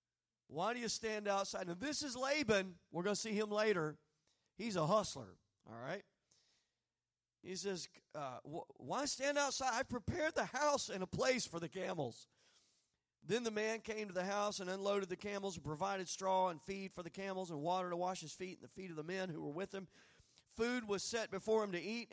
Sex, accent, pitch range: male, American, 170-220 Hz